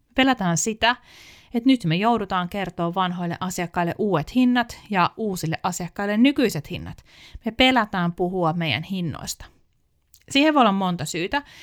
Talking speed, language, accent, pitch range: 135 wpm, Finnish, native, 175-235 Hz